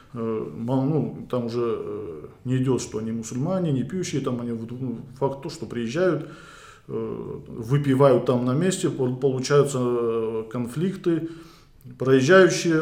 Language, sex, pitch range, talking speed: Russian, male, 120-145 Hz, 110 wpm